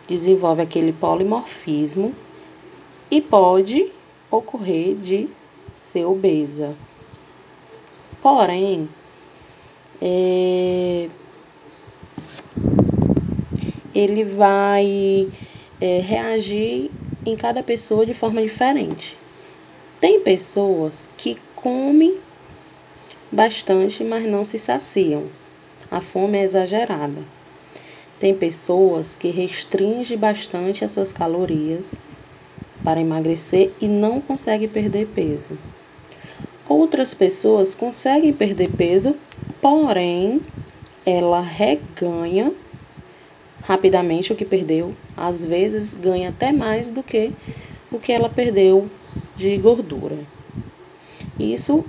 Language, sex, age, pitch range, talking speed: Portuguese, female, 20-39, 175-220 Hz, 85 wpm